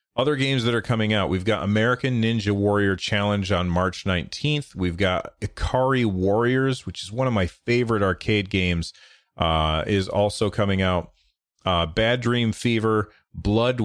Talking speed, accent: 160 wpm, American